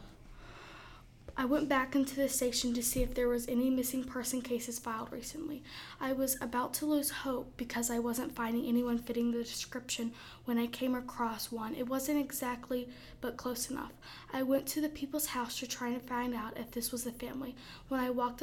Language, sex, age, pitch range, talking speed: English, female, 20-39, 235-265 Hz, 200 wpm